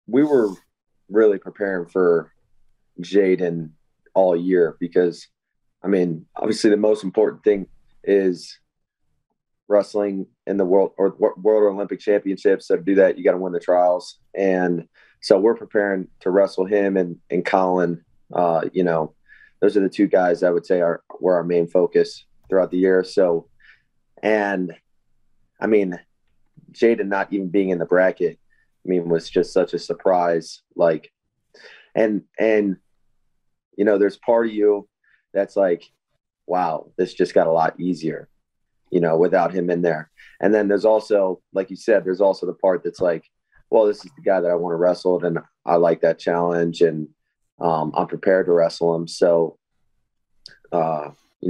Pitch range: 85-100 Hz